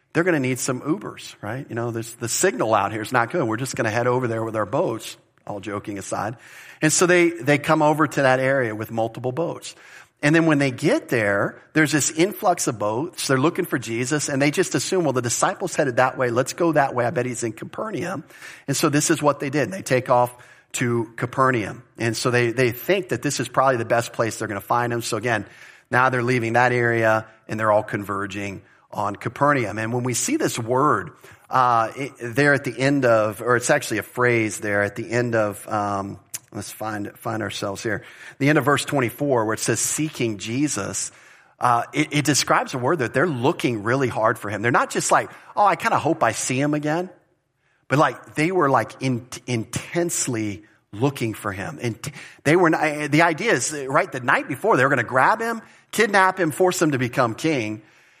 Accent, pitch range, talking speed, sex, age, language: American, 115-150 Hz, 225 wpm, male, 40-59, English